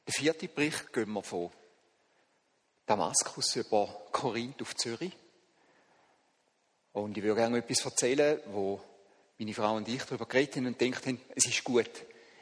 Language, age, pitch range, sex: German, 50-69, 115-165 Hz, male